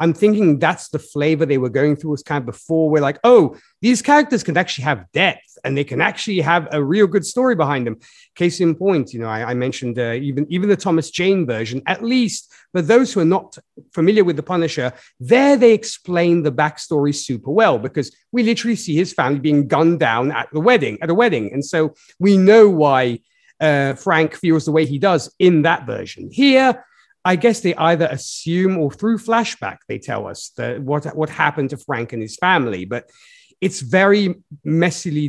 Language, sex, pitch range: English, male, 140-185 Hz